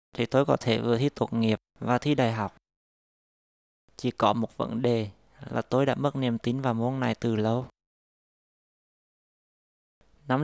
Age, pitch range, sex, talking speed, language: 20-39, 115-135 Hz, male, 165 wpm, Vietnamese